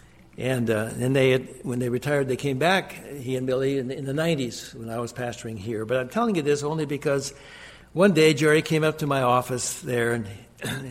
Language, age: English, 60-79